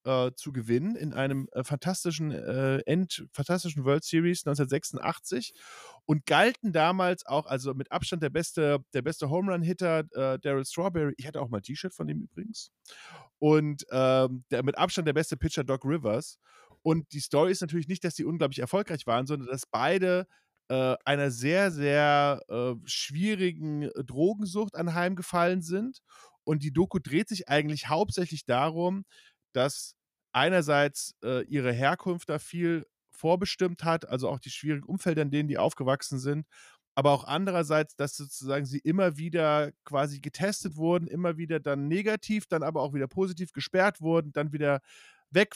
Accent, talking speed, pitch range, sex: German, 155 wpm, 140-180 Hz, male